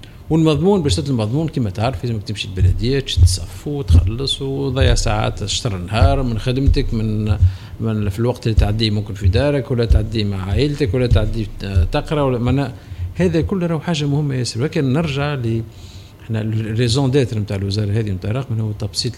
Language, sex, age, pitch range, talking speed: Arabic, male, 50-69, 100-130 Hz, 165 wpm